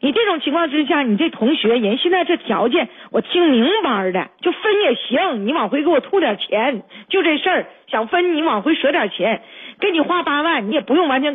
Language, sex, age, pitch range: Chinese, female, 40-59, 230-335 Hz